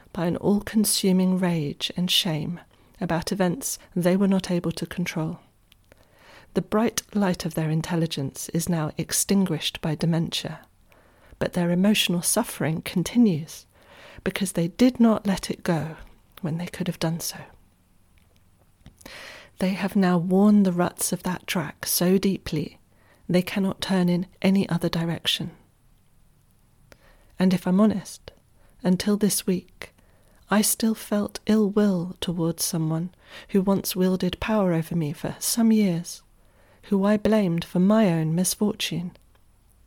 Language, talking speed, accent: English, 135 wpm, British